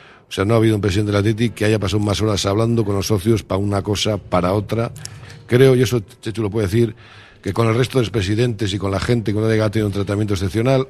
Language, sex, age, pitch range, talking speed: Spanish, male, 50-69, 100-120 Hz, 270 wpm